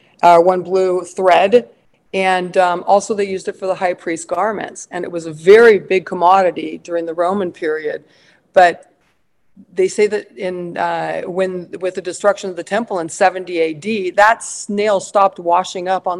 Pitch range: 180-205 Hz